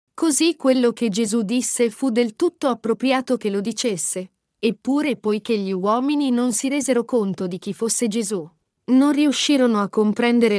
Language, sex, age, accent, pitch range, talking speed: Italian, female, 40-59, native, 200-260 Hz, 160 wpm